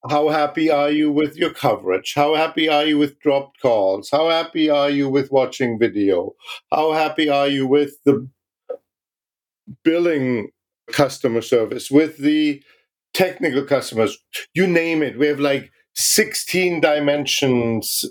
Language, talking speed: English, 140 wpm